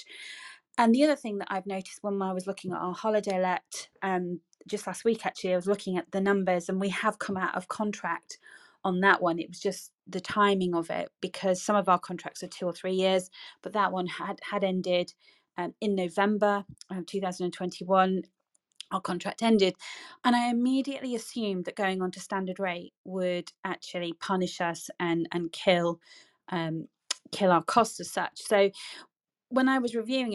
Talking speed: 190 wpm